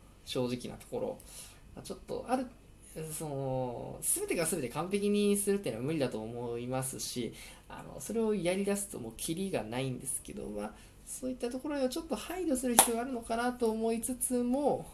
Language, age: Japanese, 20-39